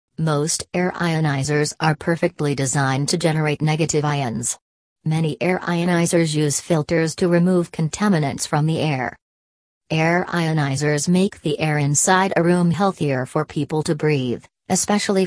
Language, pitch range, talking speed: English, 145-170 Hz, 140 wpm